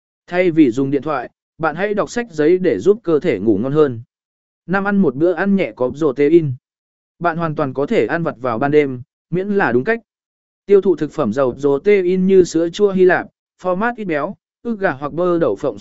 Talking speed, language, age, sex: 225 wpm, Vietnamese, 20-39, male